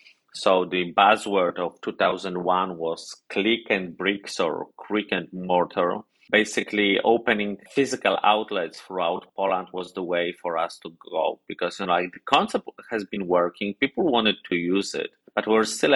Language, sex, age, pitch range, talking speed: English, male, 30-49, 95-110 Hz, 160 wpm